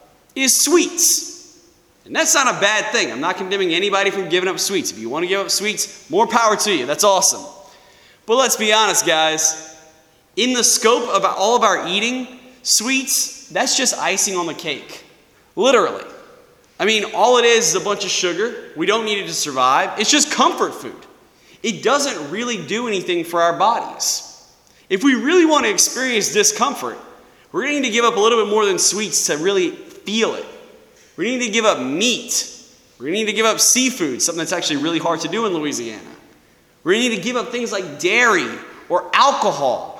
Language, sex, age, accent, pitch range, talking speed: English, male, 20-39, American, 200-275 Hz, 200 wpm